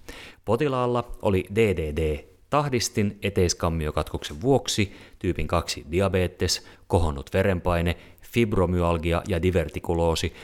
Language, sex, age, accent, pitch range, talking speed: Finnish, male, 30-49, native, 90-105 Hz, 75 wpm